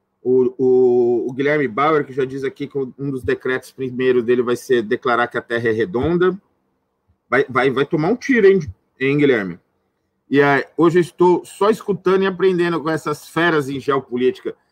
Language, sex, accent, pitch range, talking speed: Portuguese, male, Brazilian, 130-185 Hz, 190 wpm